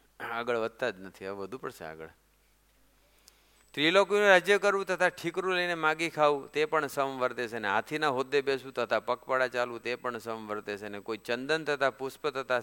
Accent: native